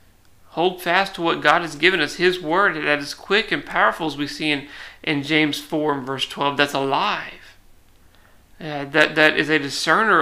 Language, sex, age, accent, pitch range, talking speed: English, male, 40-59, American, 135-170 Hz, 195 wpm